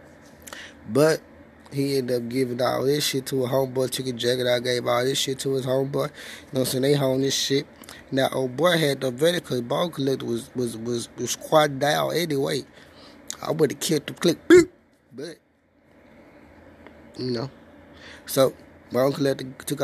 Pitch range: 130-160 Hz